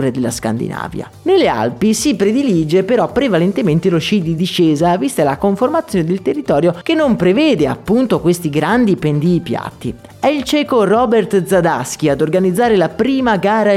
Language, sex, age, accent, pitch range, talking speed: Italian, male, 30-49, native, 155-225 Hz, 155 wpm